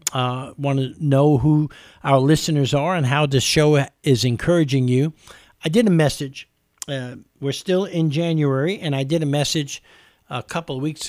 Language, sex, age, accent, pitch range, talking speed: English, male, 50-69, American, 130-160 Hz, 175 wpm